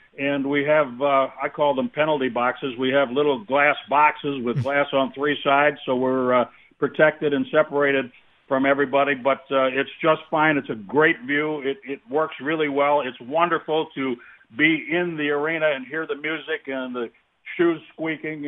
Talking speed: 180 wpm